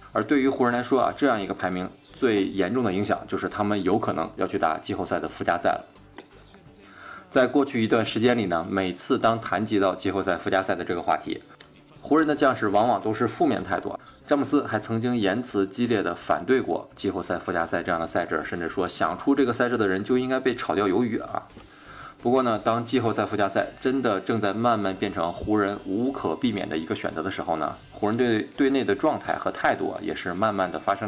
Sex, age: male, 20-39